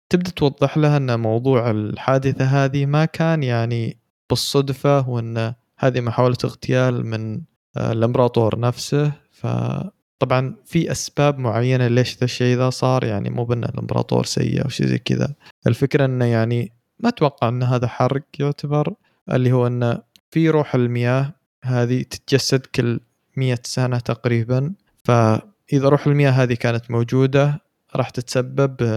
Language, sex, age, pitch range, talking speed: Arabic, male, 20-39, 115-140 Hz, 135 wpm